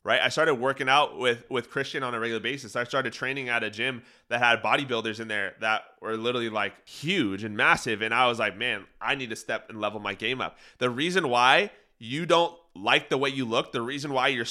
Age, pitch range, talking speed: 30-49, 115-145 Hz, 240 wpm